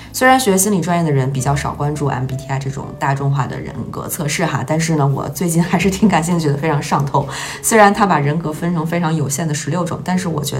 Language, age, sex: Chinese, 20-39, female